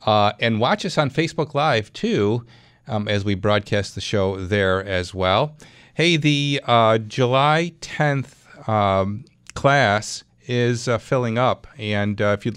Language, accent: English, American